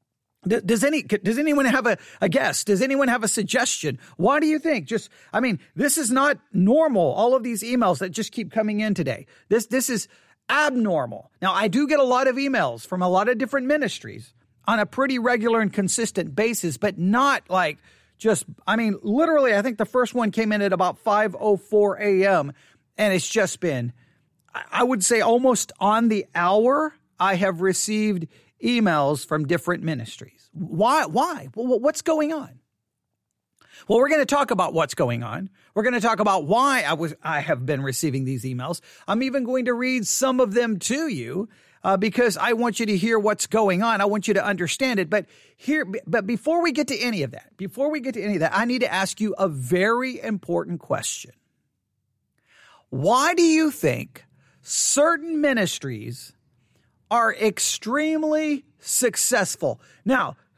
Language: English